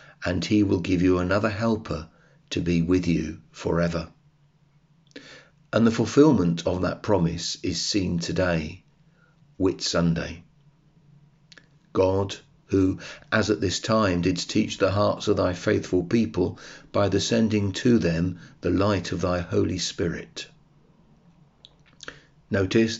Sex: male